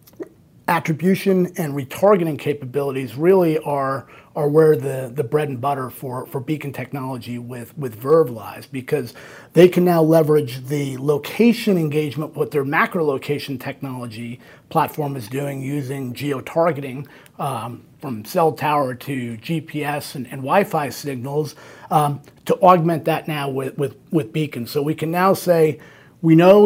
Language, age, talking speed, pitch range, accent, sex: English, 30-49, 145 wpm, 140-165 Hz, American, male